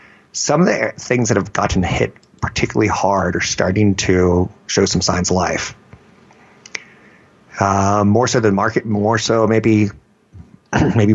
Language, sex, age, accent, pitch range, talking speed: English, male, 30-49, American, 95-120 Hz, 145 wpm